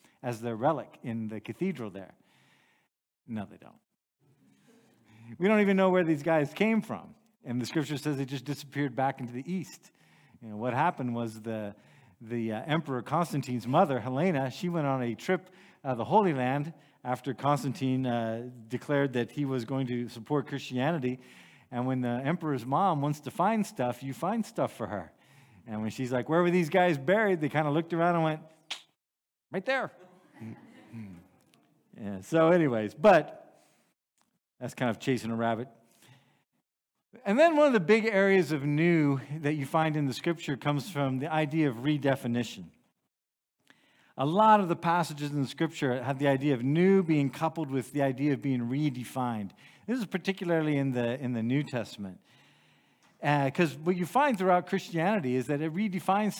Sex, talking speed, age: male, 175 wpm, 50-69